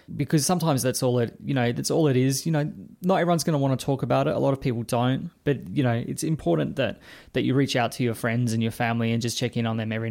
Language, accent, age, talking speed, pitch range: English, Australian, 20-39, 295 wpm, 115-135 Hz